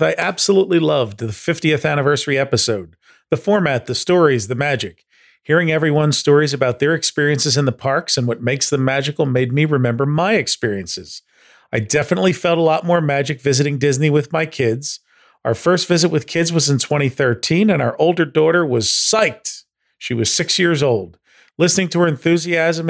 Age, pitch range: 40-59, 125-170 Hz